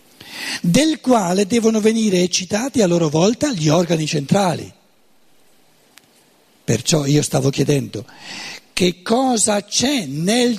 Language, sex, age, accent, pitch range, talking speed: Italian, male, 50-69, native, 150-225 Hz, 110 wpm